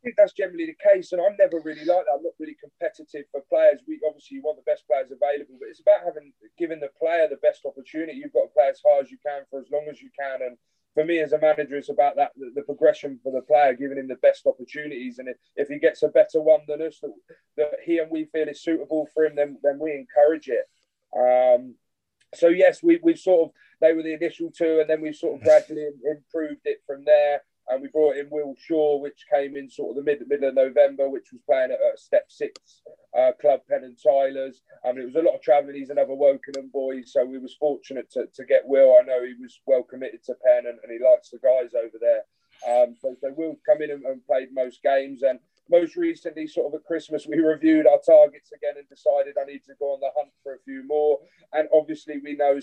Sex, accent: male, British